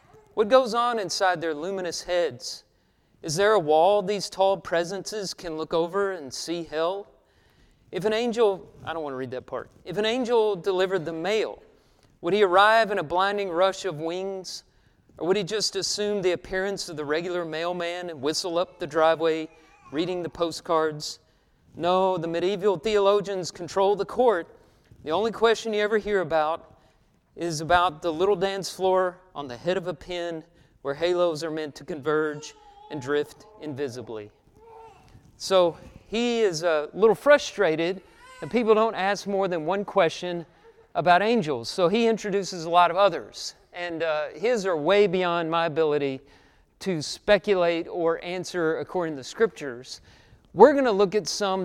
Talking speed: 165 wpm